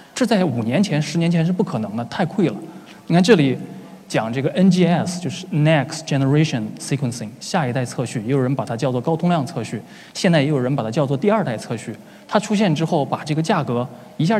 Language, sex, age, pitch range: Chinese, male, 20-39, 135-180 Hz